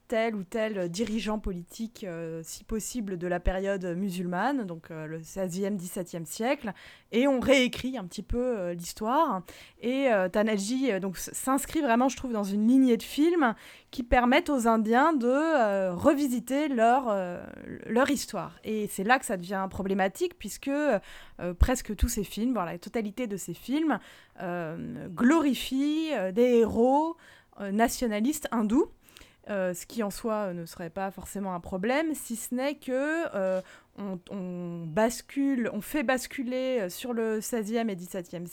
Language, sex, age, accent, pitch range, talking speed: French, female, 20-39, French, 190-255 Hz, 165 wpm